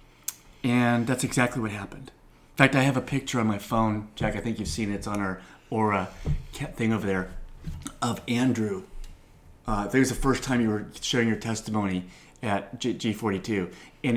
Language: English